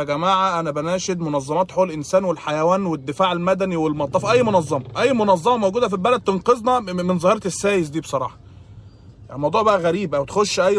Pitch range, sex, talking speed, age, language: 175-230 Hz, male, 165 wpm, 20-39, Arabic